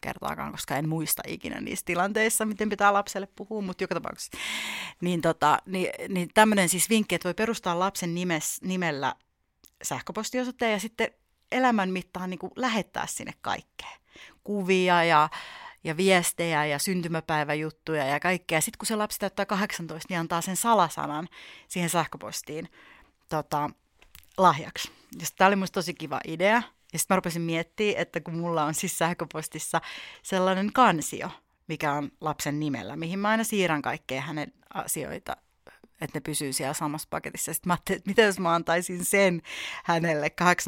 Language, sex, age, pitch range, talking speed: Finnish, female, 30-49, 155-190 Hz, 150 wpm